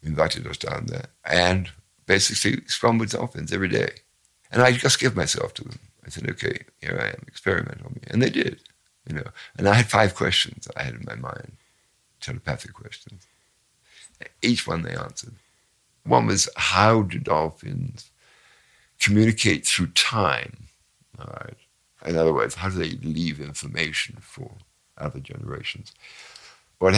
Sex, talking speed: male, 155 wpm